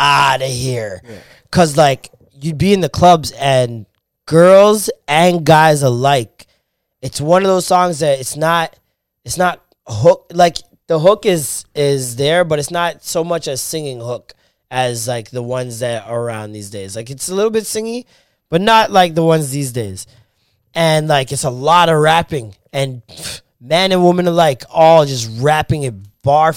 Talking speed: 180 wpm